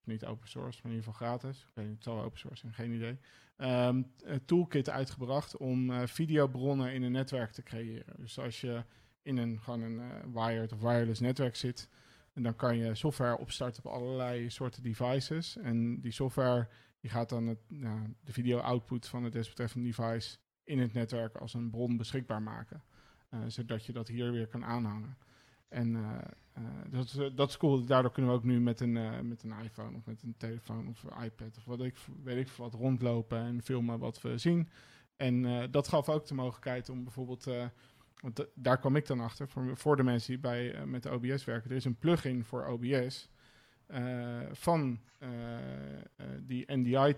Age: 40-59